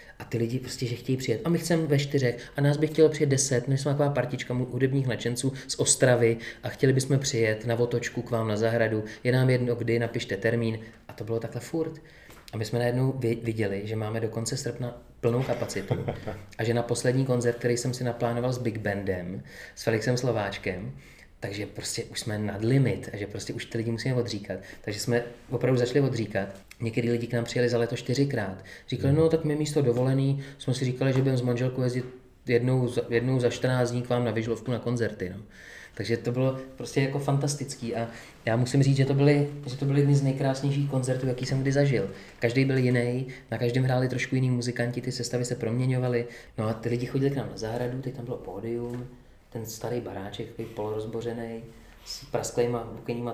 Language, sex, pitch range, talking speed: Czech, male, 115-130 Hz, 205 wpm